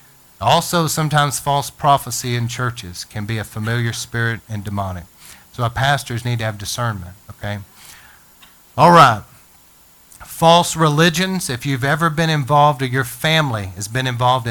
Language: English